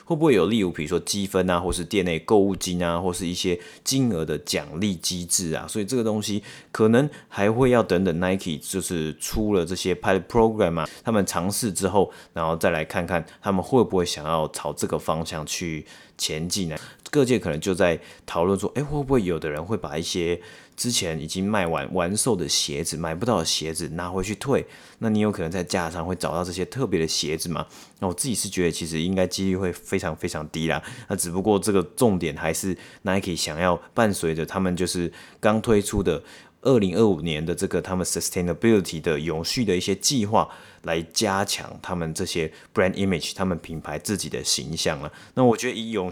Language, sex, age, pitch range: Chinese, male, 30-49, 85-105 Hz